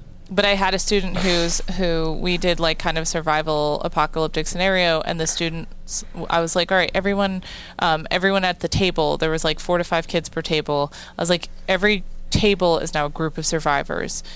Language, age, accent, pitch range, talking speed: English, 20-39, American, 165-200 Hz, 205 wpm